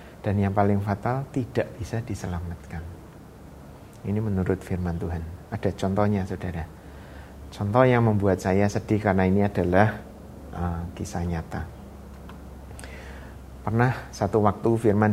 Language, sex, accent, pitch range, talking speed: Indonesian, male, native, 90-110 Hz, 115 wpm